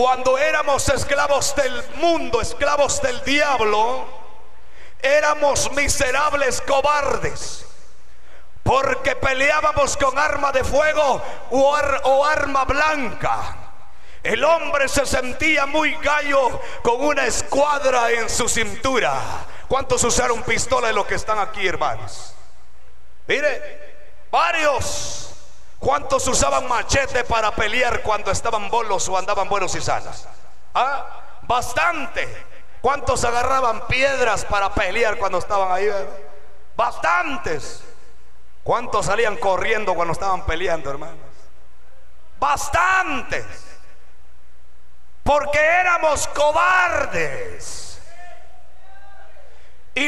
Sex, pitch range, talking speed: male, 205-300 Hz, 95 wpm